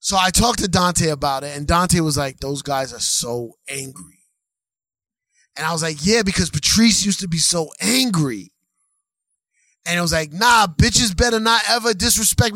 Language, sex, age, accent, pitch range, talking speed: English, male, 20-39, American, 165-210 Hz, 180 wpm